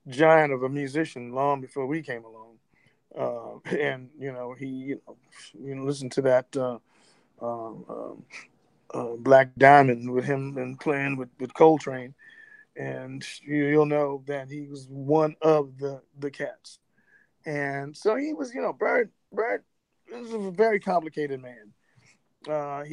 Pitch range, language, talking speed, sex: 140-170 Hz, English, 150 wpm, male